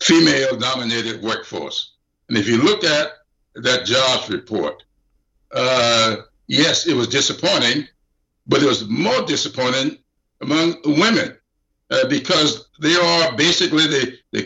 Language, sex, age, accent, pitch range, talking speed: English, male, 60-79, American, 125-170 Hz, 120 wpm